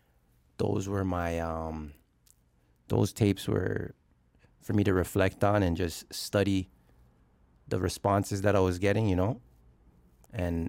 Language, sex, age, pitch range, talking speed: English, male, 20-39, 75-100 Hz, 135 wpm